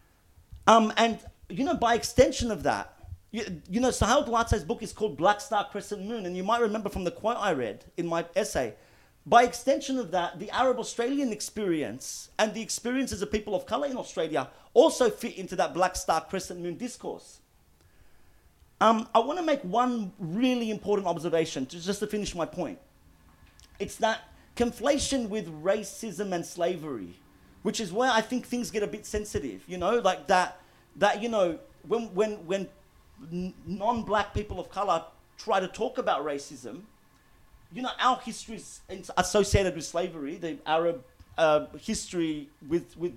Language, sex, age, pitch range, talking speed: English, male, 40-59, 160-230 Hz, 170 wpm